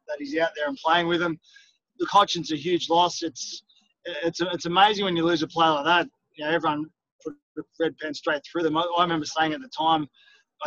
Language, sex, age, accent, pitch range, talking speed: English, male, 20-39, Australian, 155-185 Hz, 230 wpm